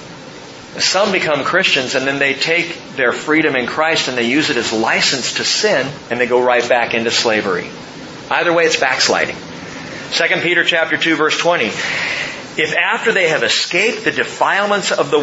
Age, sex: 40-59, male